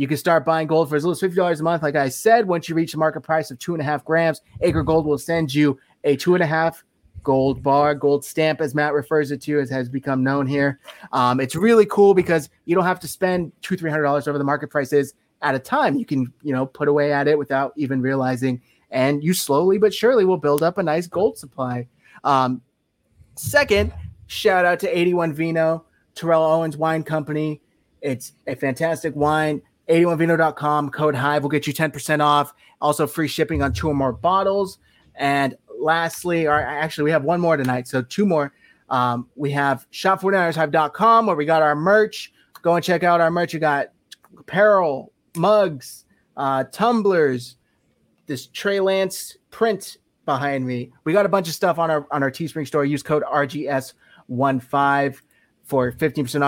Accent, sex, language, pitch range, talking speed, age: American, male, English, 140-165 Hz, 190 wpm, 30-49